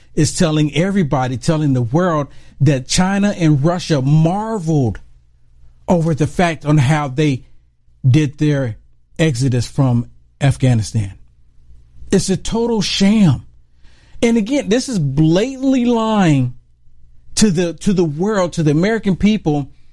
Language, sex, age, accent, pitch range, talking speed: English, male, 50-69, American, 130-195 Hz, 125 wpm